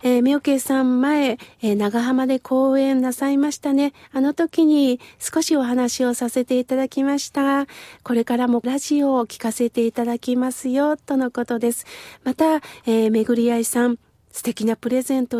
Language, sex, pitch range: Japanese, female, 230-295 Hz